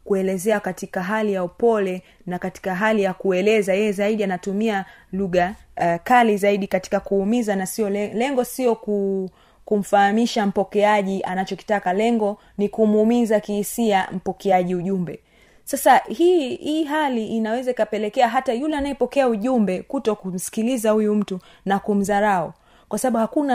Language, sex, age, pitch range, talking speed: Swahili, female, 30-49, 195-245 Hz, 125 wpm